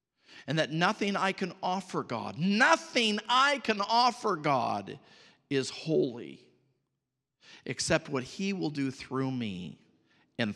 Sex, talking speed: male, 125 wpm